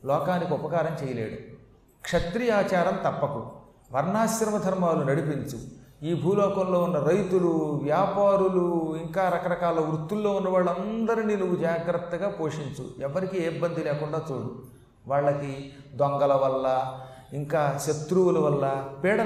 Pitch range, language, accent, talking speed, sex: 140-185 Hz, Telugu, native, 100 wpm, male